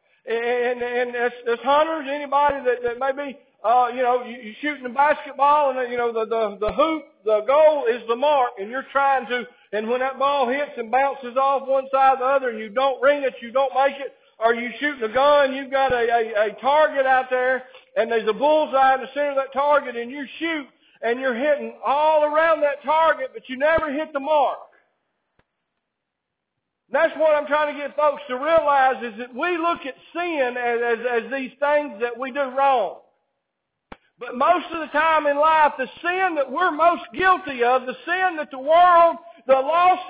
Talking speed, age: 210 wpm, 50-69